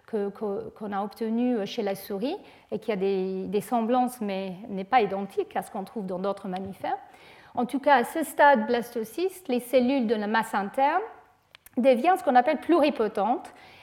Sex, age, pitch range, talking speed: female, 40-59, 220-275 Hz, 185 wpm